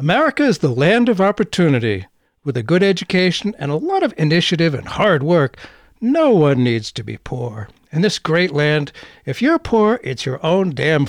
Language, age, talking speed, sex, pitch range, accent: English, 60-79, 190 wpm, male, 140-215 Hz, American